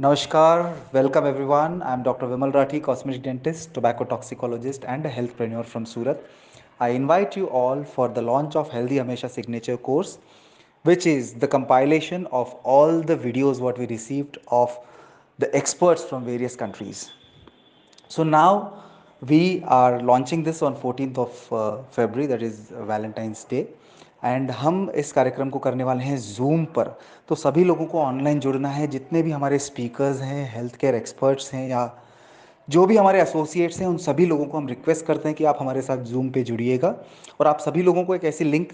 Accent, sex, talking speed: native, male, 175 wpm